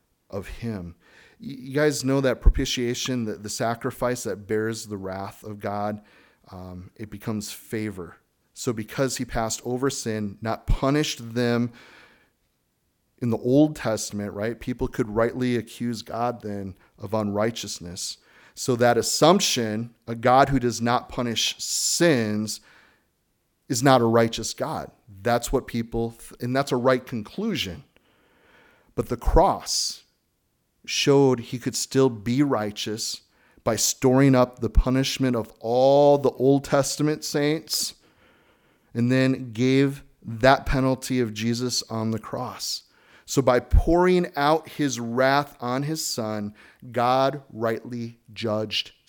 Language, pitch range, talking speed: English, 110-130 Hz, 130 wpm